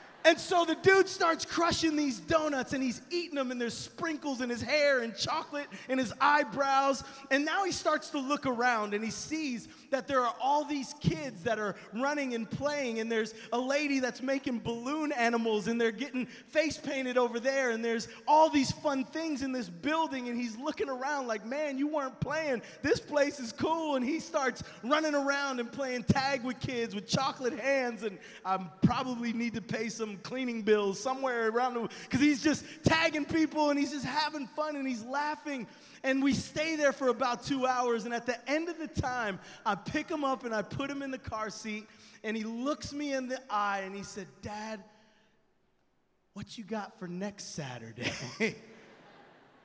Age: 30-49